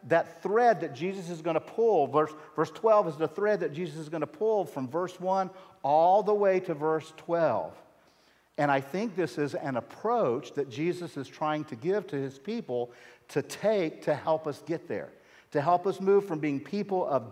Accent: American